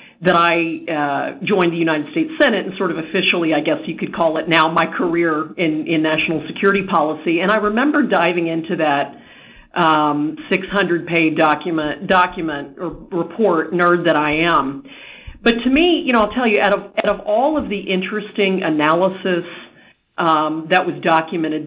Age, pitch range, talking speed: 50-69, 160-200 Hz, 175 wpm